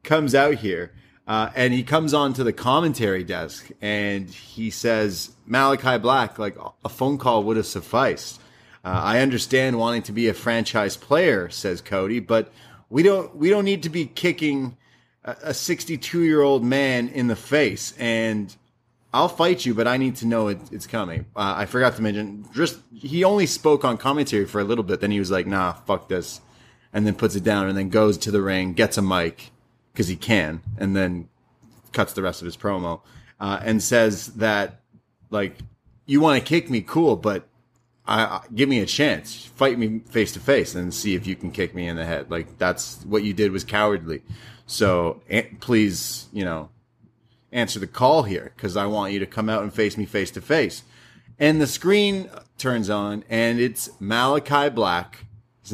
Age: 30-49